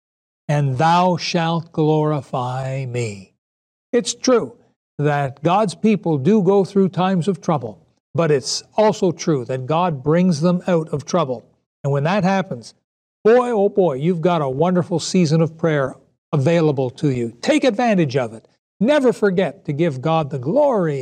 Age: 60-79